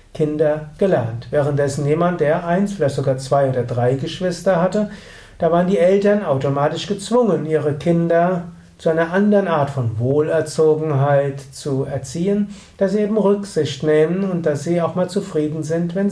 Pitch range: 145-195 Hz